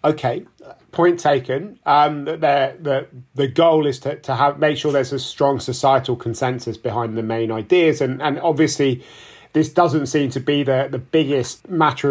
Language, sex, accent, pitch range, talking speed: English, male, British, 125-155 Hz, 175 wpm